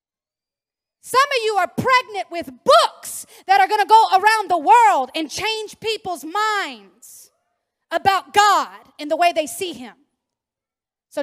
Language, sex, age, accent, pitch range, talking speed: English, female, 30-49, American, 315-415 Hz, 150 wpm